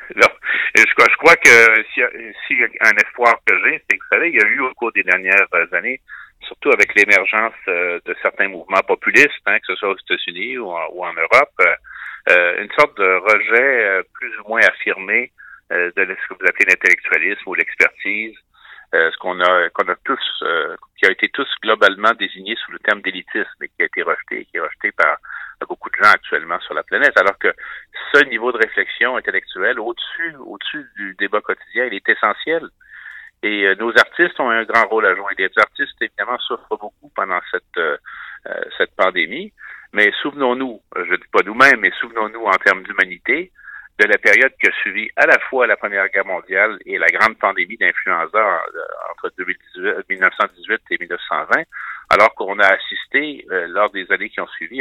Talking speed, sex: 190 wpm, male